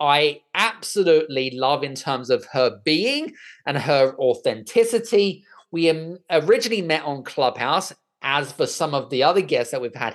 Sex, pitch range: male, 130-180 Hz